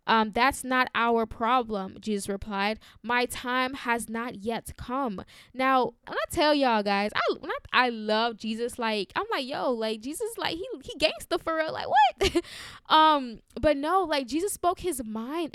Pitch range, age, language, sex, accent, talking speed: 235-275 Hz, 10-29, English, female, American, 180 wpm